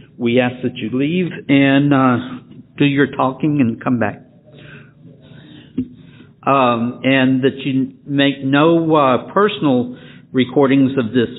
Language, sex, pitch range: English, male, 125-145 Hz